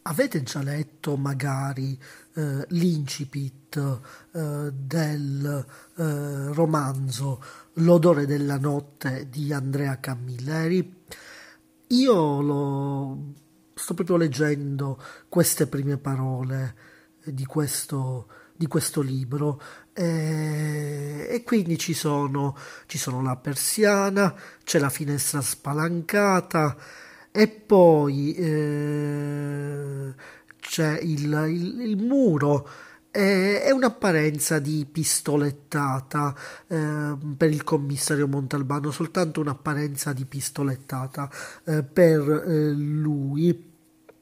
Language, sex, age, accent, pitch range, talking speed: Italian, male, 40-59, native, 140-160 Hz, 85 wpm